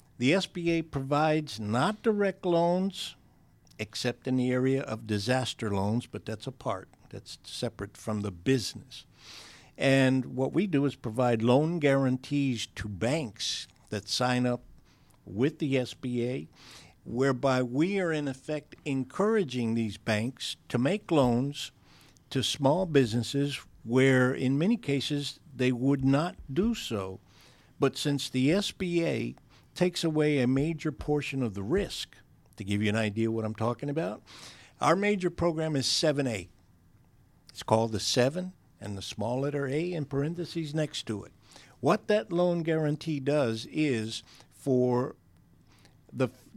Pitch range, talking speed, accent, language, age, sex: 115-155 Hz, 140 wpm, American, English, 60-79, male